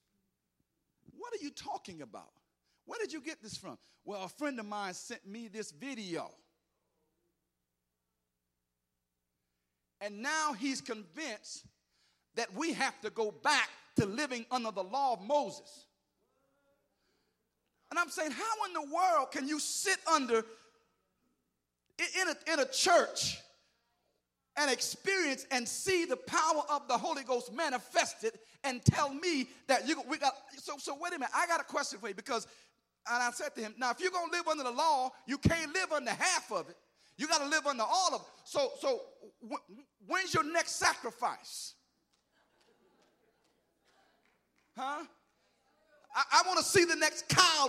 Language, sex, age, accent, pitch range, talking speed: English, male, 50-69, American, 235-320 Hz, 160 wpm